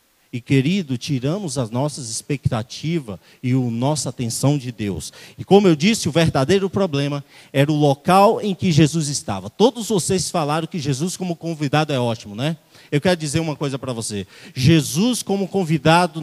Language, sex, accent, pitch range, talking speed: Portuguese, male, Brazilian, 145-195 Hz, 170 wpm